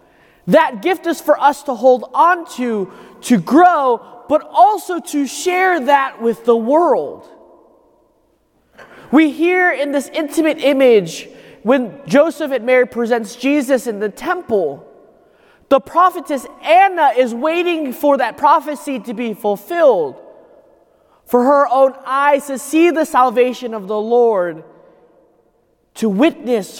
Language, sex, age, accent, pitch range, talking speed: English, male, 20-39, American, 230-315 Hz, 130 wpm